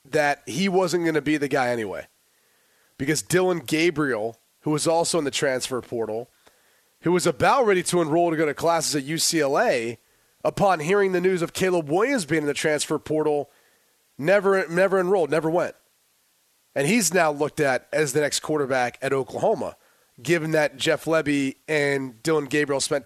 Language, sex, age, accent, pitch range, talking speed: English, male, 30-49, American, 140-170 Hz, 175 wpm